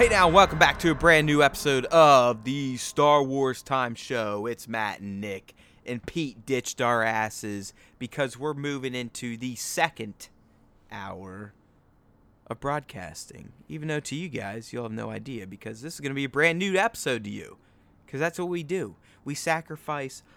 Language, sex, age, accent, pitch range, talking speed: English, male, 30-49, American, 105-135 Hz, 180 wpm